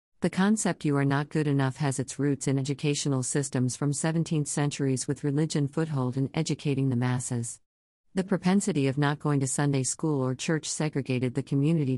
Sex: female